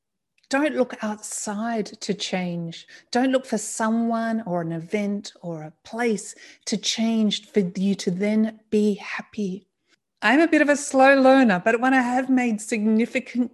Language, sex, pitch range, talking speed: English, female, 190-235 Hz, 160 wpm